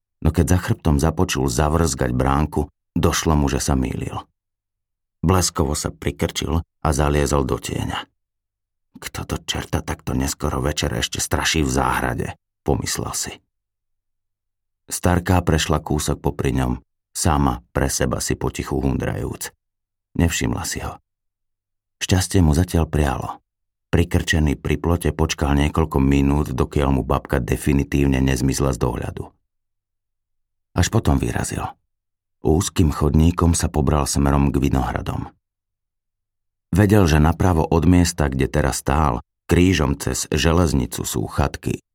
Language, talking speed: Slovak, 120 wpm